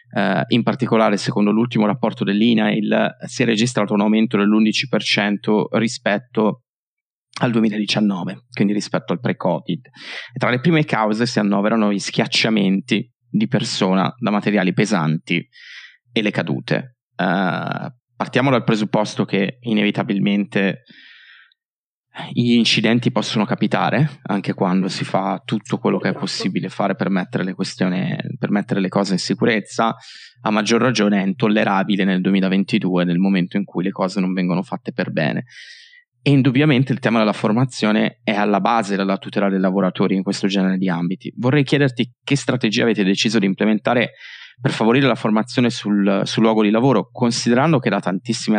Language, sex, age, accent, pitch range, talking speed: Italian, male, 30-49, native, 100-120 Hz, 150 wpm